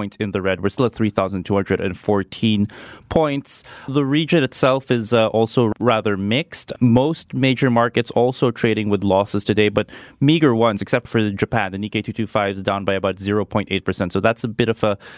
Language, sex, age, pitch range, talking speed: English, male, 20-39, 100-120 Hz, 175 wpm